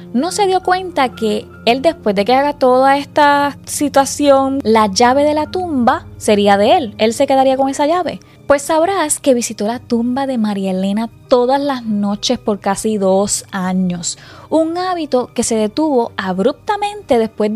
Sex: female